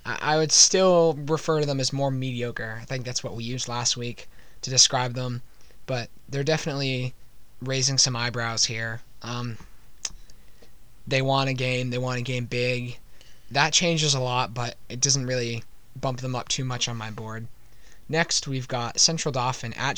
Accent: American